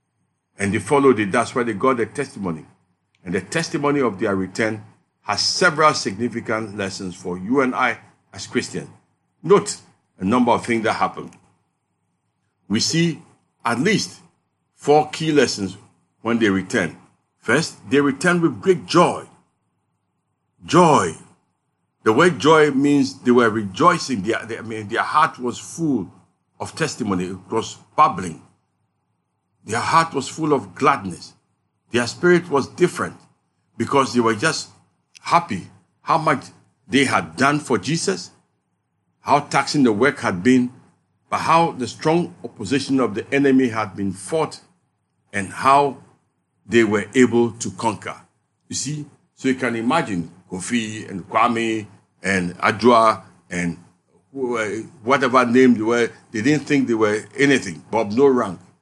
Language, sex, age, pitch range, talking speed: English, male, 60-79, 105-140 Hz, 145 wpm